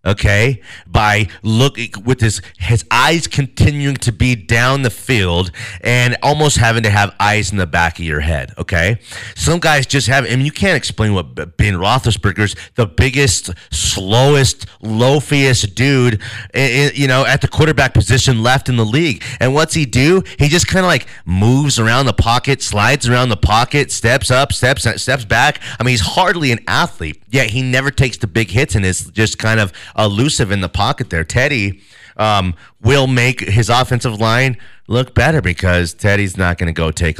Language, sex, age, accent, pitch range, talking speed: English, male, 30-49, American, 100-130 Hz, 185 wpm